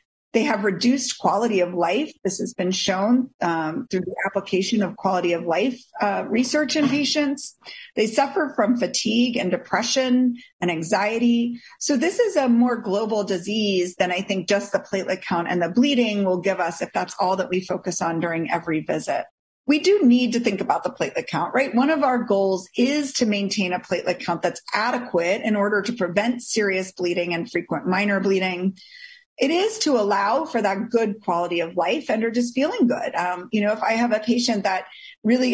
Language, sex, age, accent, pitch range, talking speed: English, female, 40-59, American, 185-250 Hz, 200 wpm